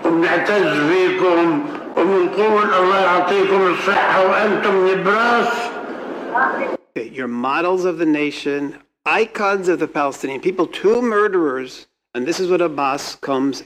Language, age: English, 60-79